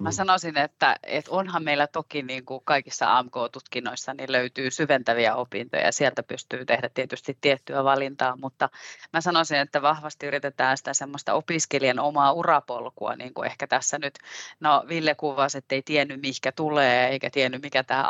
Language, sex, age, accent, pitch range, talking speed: Finnish, female, 30-49, native, 135-155 Hz, 165 wpm